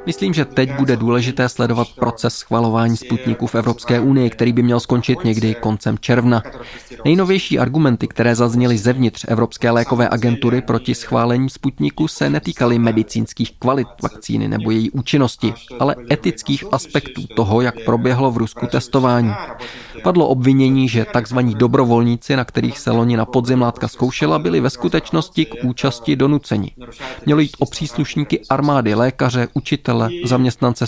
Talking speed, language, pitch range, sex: 135 wpm, Czech, 115-135 Hz, male